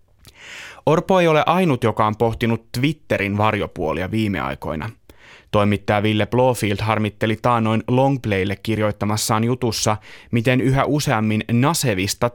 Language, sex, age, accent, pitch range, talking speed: Finnish, male, 30-49, native, 105-130 Hz, 110 wpm